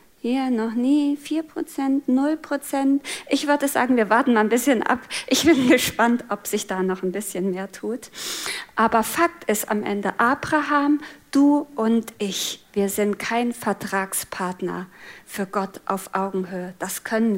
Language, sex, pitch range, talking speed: German, female, 205-265 Hz, 150 wpm